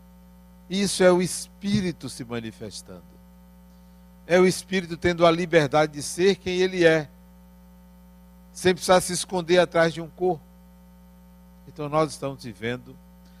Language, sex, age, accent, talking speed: Portuguese, male, 60-79, Brazilian, 130 wpm